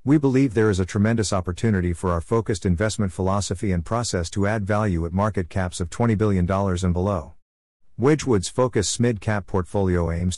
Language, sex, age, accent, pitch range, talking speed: English, male, 50-69, American, 90-110 Hz, 180 wpm